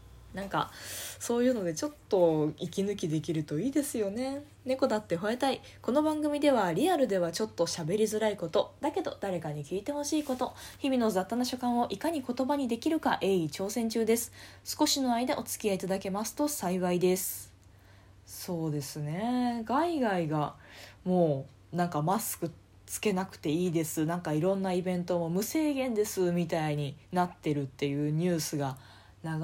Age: 20-39